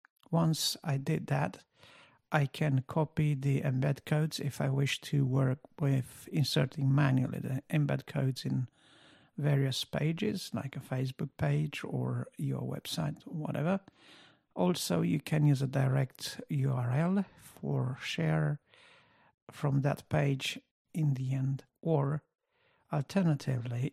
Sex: male